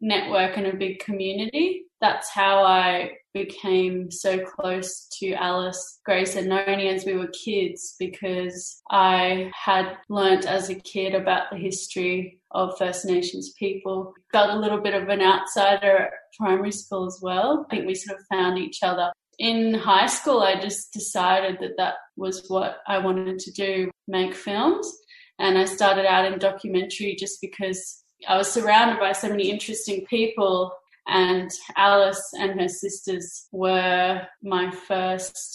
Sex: female